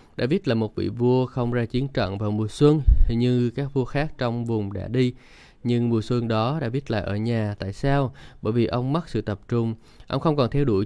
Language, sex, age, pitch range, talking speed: Vietnamese, male, 20-39, 110-130 Hz, 240 wpm